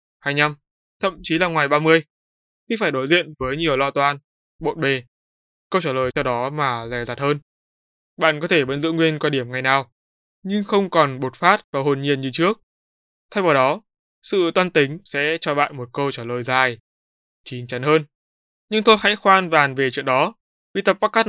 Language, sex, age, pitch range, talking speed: Vietnamese, male, 20-39, 120-155 Hz, 205 wpm